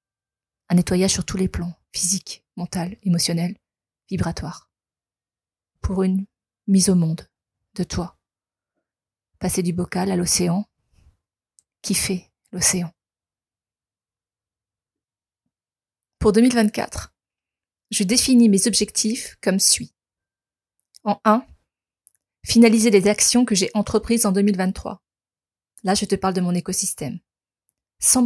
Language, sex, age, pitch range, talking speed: French, female, 30-49, 180-210 Hz, 105 wpm